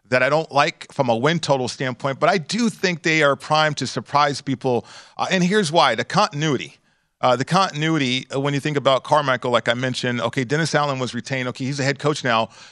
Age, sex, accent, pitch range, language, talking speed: 40-59, male, American, 130-155 Hz, English, 225 wpm